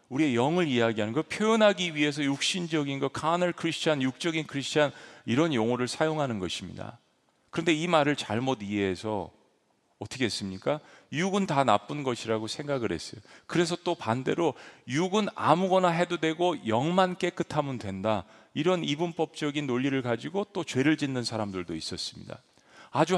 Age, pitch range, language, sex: 40-59, 115-165 Hz, Korean, male